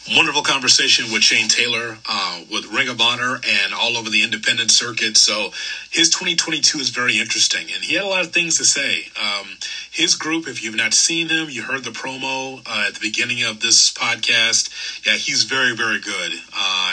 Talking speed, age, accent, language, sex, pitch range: 200 wpm, 30-49, American, English, male, 110-135 Hz